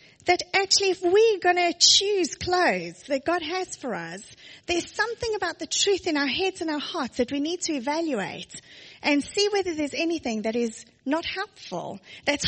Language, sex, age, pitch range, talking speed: English, female, 30-49, 270-370 Hz, 190 wpm